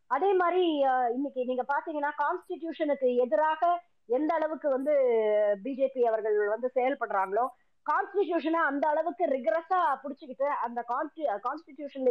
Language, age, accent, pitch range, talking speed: Tamil, 20-39, native, 235-300 Hz, 50 wpm